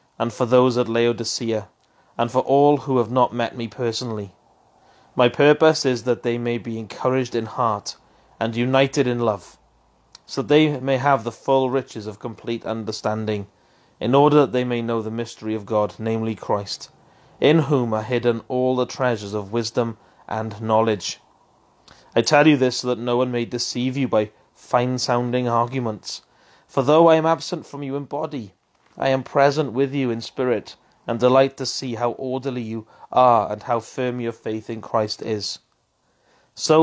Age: 30-49